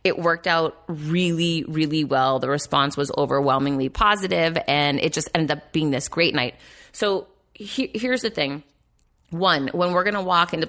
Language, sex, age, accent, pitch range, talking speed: English, female, 30-49, American, 145-195 Hz, 170 wpm